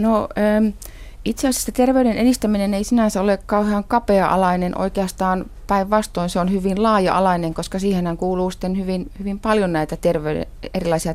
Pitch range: 160-190 Hz